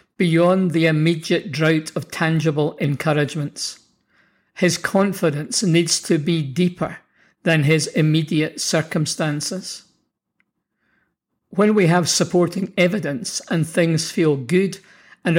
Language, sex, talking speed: English, male, 105 wpm